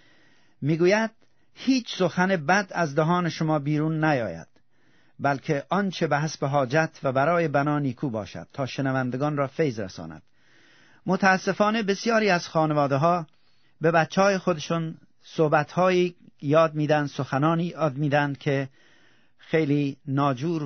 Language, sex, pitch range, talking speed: Persian, male, 145-175 Hz, 120 wpm